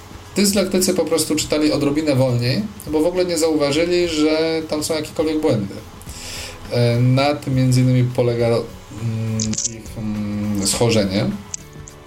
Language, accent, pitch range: Polish, native, 105-125 Hz